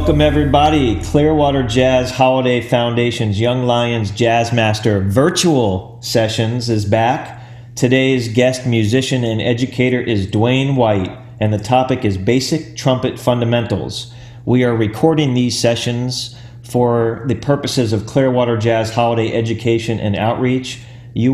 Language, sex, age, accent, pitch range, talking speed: English, male, 40-59, American, 115-130 Hz, 125 wpm